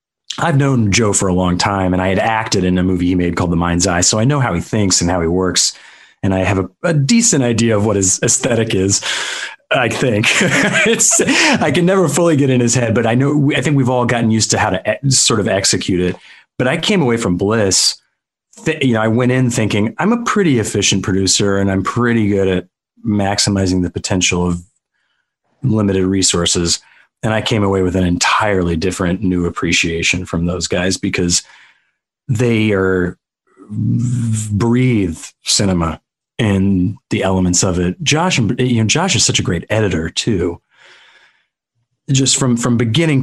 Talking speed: 190 wpm